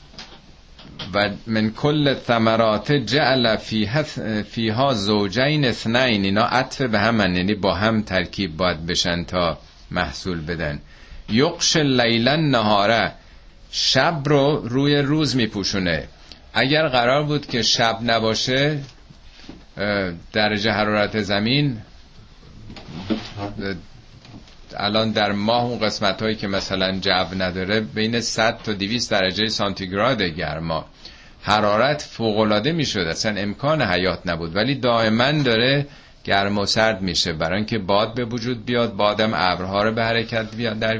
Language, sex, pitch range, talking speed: Persian, male, 95-125 Hz, 120 wpm